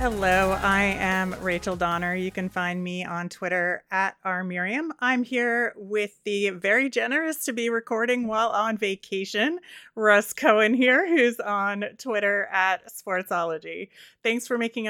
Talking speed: 145 wpm